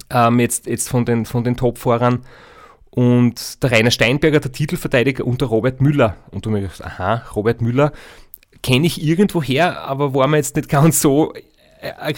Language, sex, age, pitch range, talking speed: German, male, 30-49, 120-145 Hz, 170 wpm